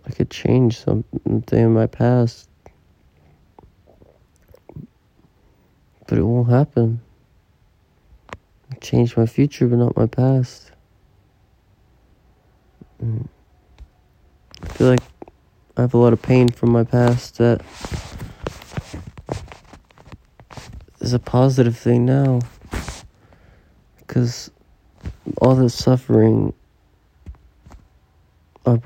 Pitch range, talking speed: 105-125 Hz, 85 wpm